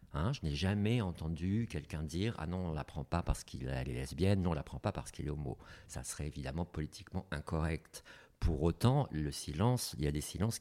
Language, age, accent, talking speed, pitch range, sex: French, 50-69, French, 245 wpm, 80-105 Hz, male